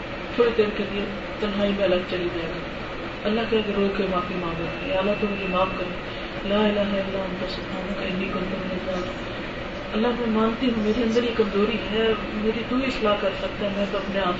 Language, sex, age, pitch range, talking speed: Urdu, female, 40-59, 200-275 Hz, 190 wpm